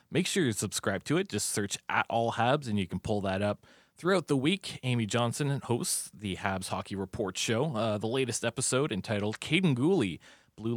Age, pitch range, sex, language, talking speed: 20-39, 105-130 Hz, male, English, 200 wpm